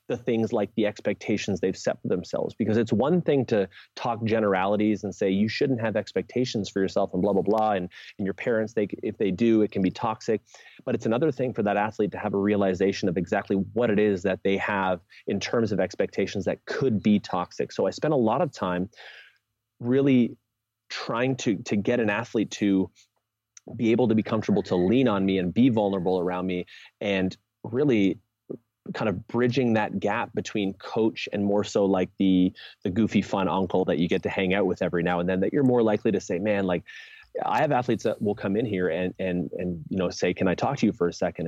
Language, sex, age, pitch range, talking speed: English, male, 30-49, 95-115 Hz, 225 wpm